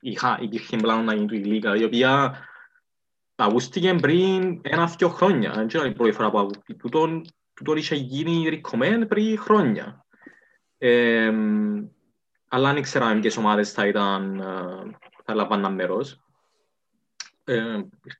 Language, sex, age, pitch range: Greek, male, 20-39, 105-135 Hz